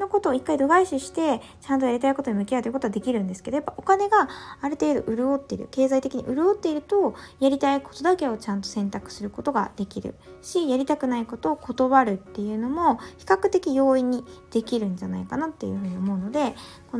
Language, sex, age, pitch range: Japanese, female, 20-39, 210-280 Hz